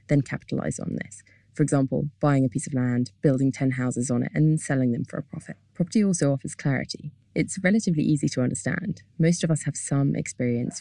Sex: female